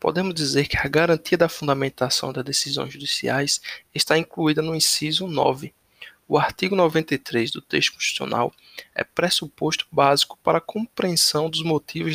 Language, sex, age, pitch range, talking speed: Portuguese, male, 20-39, 145-165 Hz, 145 wpm